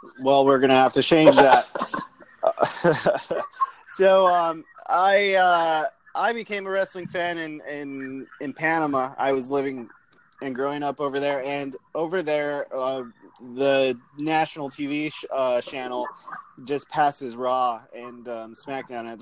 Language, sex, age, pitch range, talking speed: English, male, 20-39, 125-150 Hz, 140 wpm